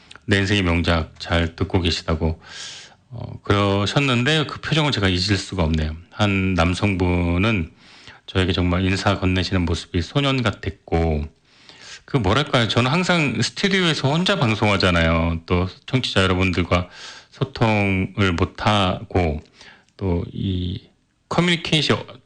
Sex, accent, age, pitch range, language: male, native, 40-59, 90-120 Hz, Korean